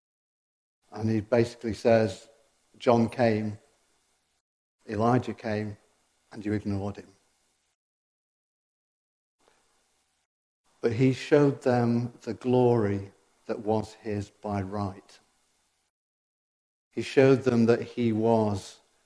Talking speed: 90 wpm